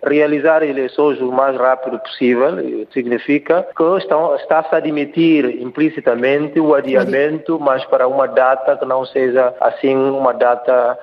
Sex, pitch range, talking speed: male, 130-160 Hz, 135 wpm